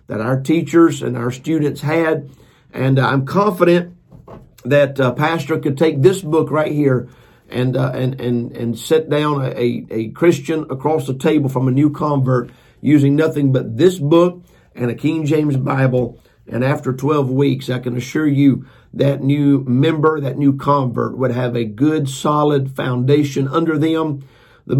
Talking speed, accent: 165 wpm, American